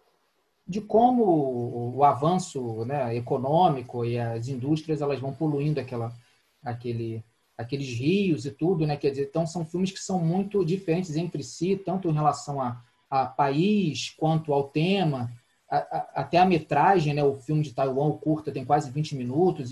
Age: 20-39